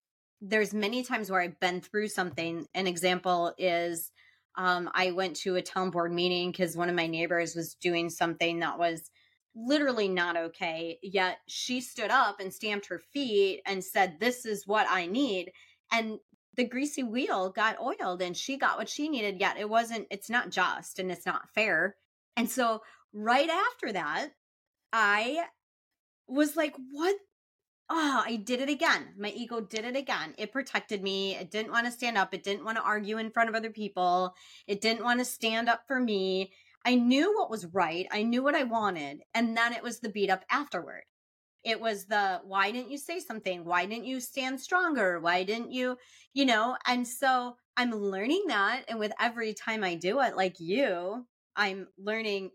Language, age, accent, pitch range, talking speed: English, 30-49, American, 185-245 Hz, 190 wpm